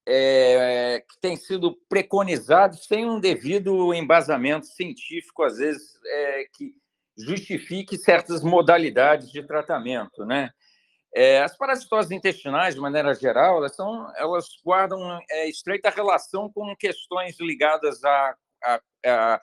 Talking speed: 125 wpm